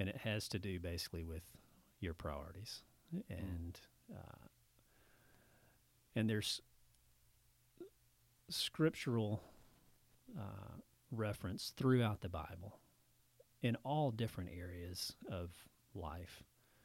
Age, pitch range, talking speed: 40-59, 95-120 Hz, 90 wpm